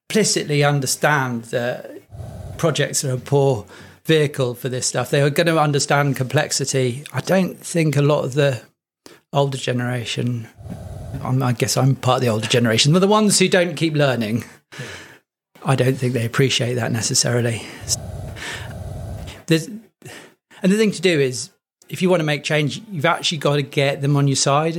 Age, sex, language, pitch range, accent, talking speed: 40-59, male, English, 125-155 Hz, British, 175 wpm